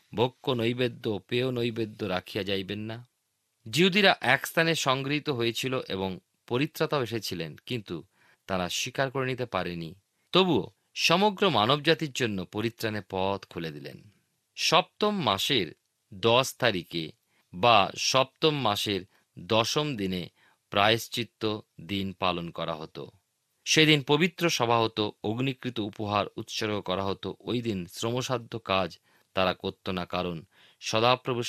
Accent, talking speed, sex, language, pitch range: native, 115 wpm, male, Bengali, 95-135 Hz